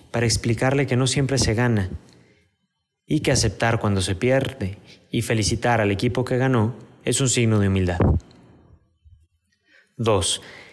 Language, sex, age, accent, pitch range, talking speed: Spanish, male, 30-49, Mexican, 95-125 Hz, 140 wpm